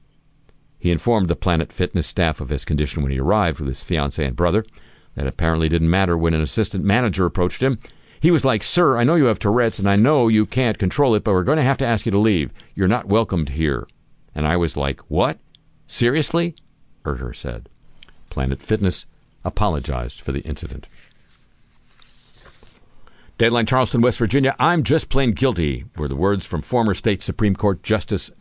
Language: English